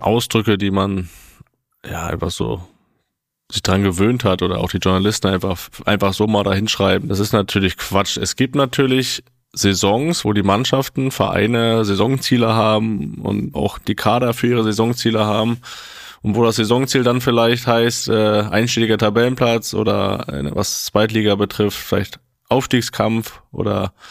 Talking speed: 145 wpm